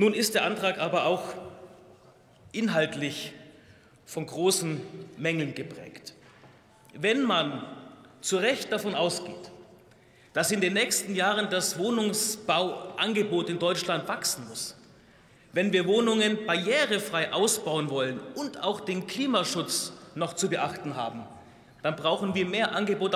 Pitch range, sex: 165-215 Hz, male